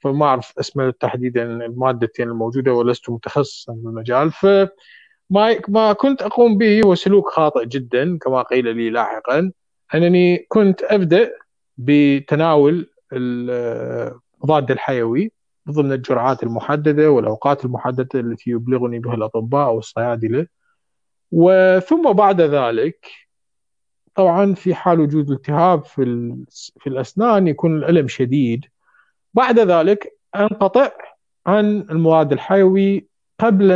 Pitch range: 130-185 Hz